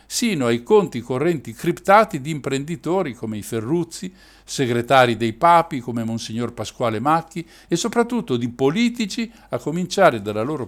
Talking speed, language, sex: 140 wpm, Italian, male